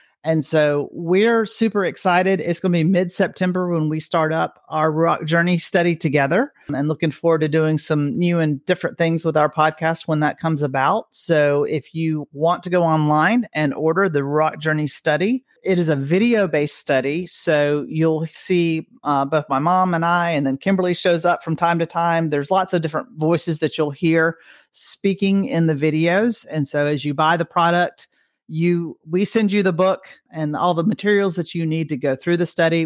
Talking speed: 205 wpm